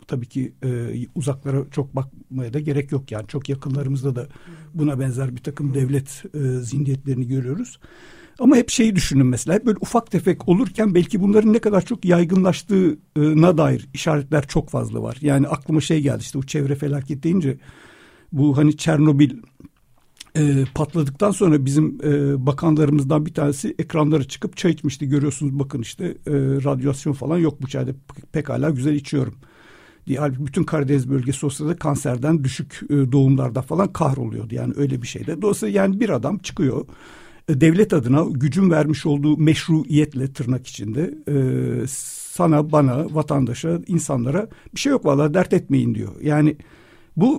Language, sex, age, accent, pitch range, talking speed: Turkish, male, 60-79, native, 135-165 Hz, 150 wpm